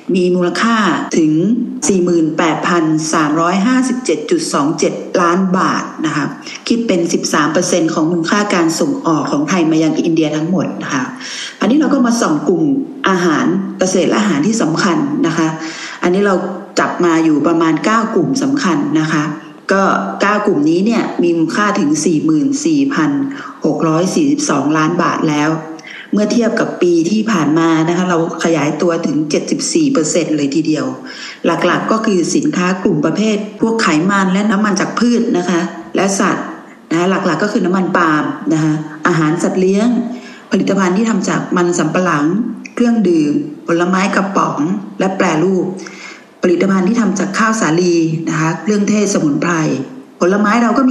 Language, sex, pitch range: Thai, female, 165-235 Hz